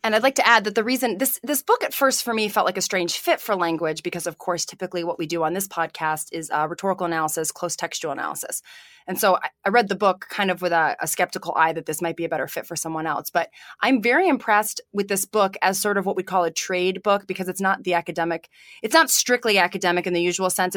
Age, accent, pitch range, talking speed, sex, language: 20-39, American, 170-200 Hz, 270 wpm, female, English